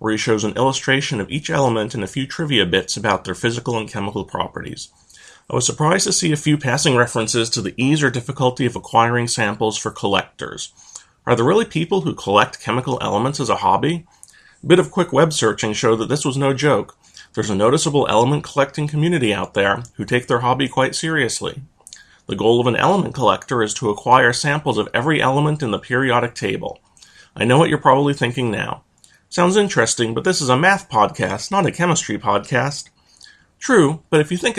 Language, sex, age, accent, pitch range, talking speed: English, male, 30-49, American, 115-150 Hz, 200 wpm